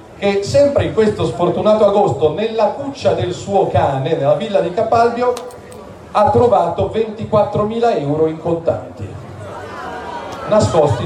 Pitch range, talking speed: 130-165 Hz, 120 wpm